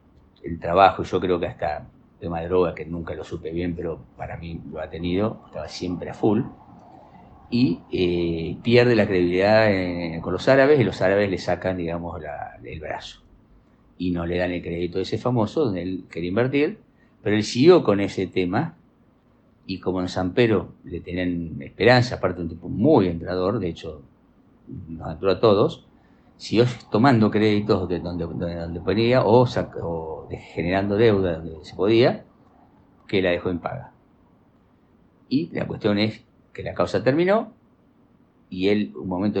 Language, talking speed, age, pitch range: Spanish, 170 wpm, 50-69, 85-105 Hz